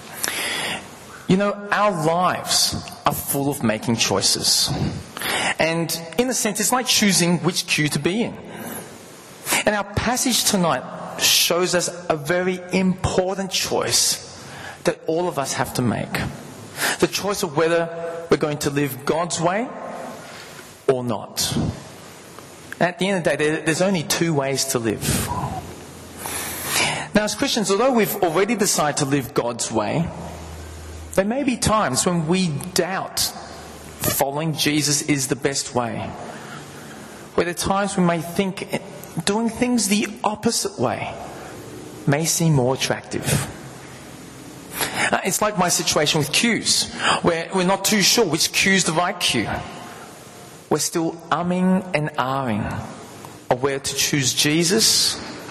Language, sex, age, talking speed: English, male, 40-59, 140 wpm